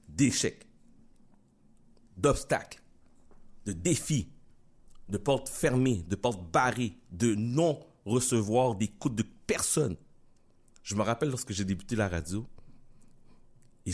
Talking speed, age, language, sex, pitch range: 110 wpm, 60-79, French, male, 95-120 Hz